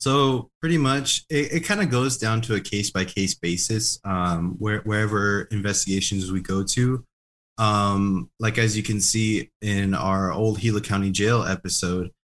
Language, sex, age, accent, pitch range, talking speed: English, male, 20-39, American, 95-115 Hz, 150 wpm